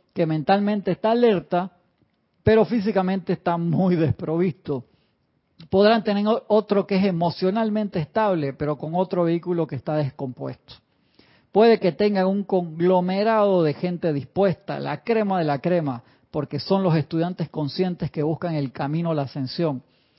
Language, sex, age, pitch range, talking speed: Spanish, male, 40-59, 155-195 Hz, 145 wpm